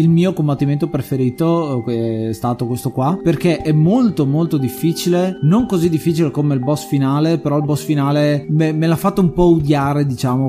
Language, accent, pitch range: Italian, native, 130-165 Hz